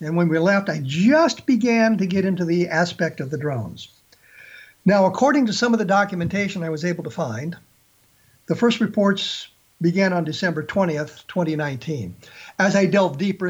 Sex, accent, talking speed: male, American, 175 wpm